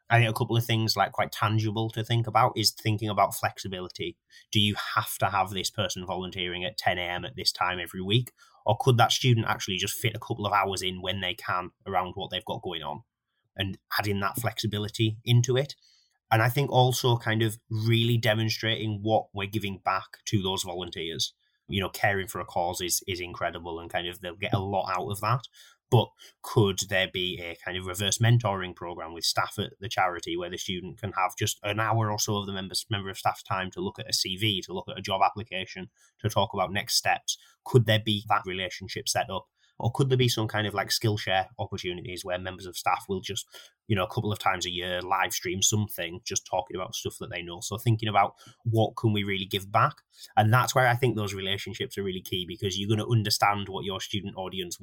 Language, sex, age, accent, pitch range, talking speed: English, male, 30-49, British, 95-110 Hz, 230 wpm